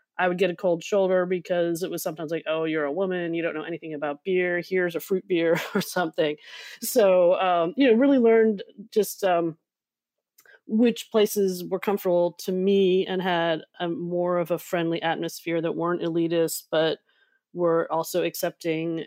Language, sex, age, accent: English, female, 30-49, American